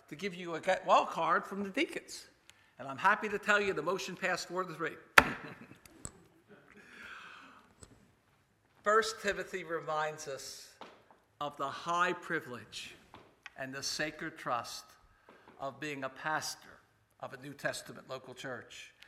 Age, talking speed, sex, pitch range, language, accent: 60-79, 135 wpm, male, 165-215 Hz, English, American